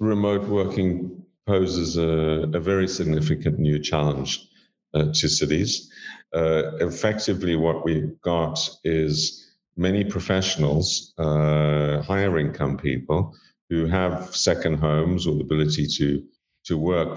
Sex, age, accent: male, 50-69, British